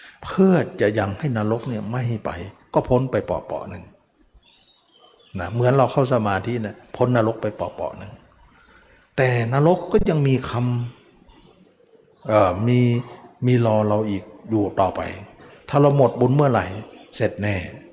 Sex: male